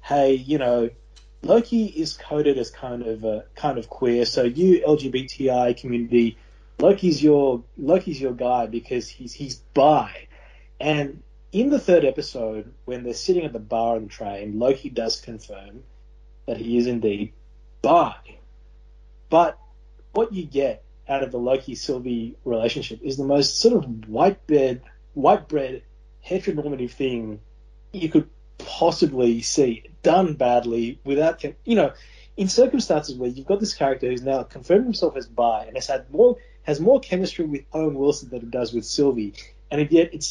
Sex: male